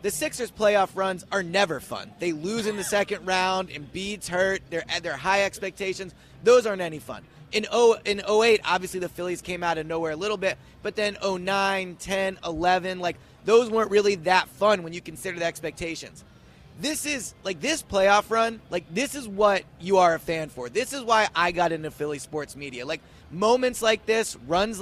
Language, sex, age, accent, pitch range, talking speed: English, male, 20-39, American, 170-215 Hz, 195 wpm